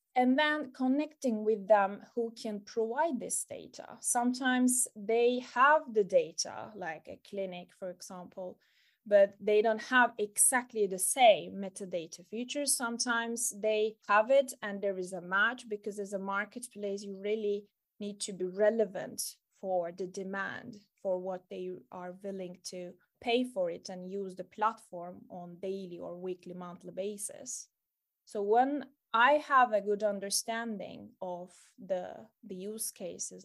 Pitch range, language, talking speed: 185-230 Hz, Swedish, 145 wpm